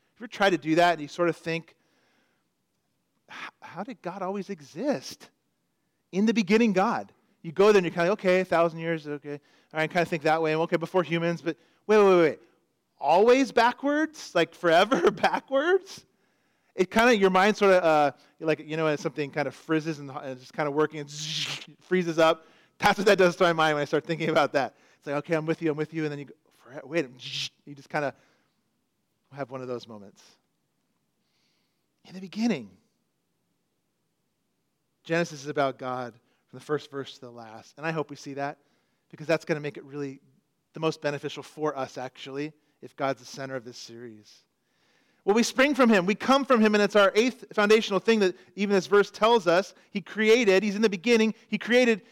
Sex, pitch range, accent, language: male, 145-200 Hz, American, English